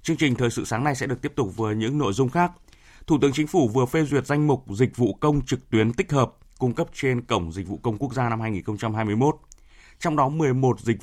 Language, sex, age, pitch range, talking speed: Vietnamese, male, 20-39, 110-135 Hz, 250 wpm